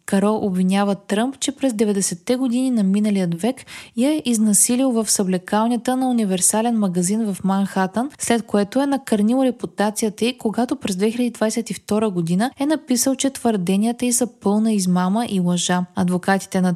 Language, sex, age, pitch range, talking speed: Bulgarian, female, 20-39, 185-235 Hz, 150 wpm